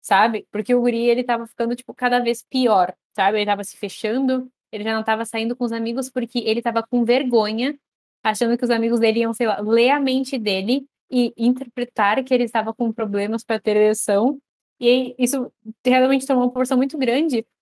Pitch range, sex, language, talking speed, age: 210-250 Hz, female, Portuguese, 200 wpm, 10-29